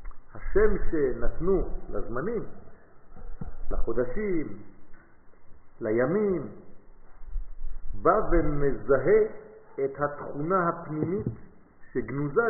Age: 50-69